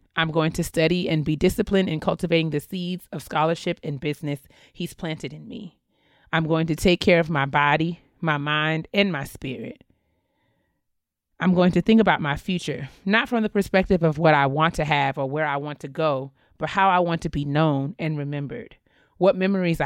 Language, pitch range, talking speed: English, 150-180 Hz, 200 wpm